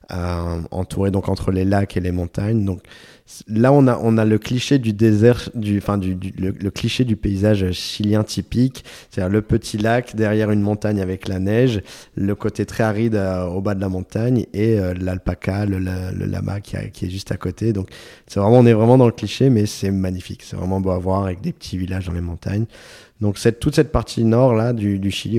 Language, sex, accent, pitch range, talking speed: French, male, French, 95-110 Hz, 230 wpm